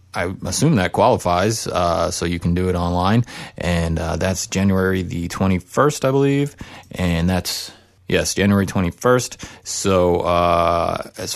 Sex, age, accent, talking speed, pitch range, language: male, 30-49, American, 145 wpm, 90-105 Hz, English